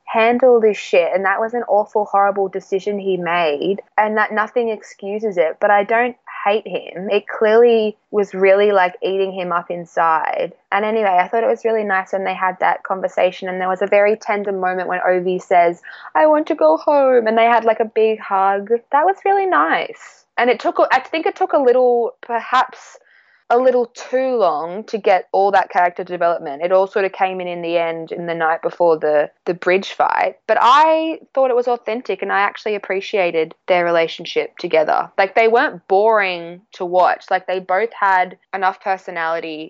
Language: English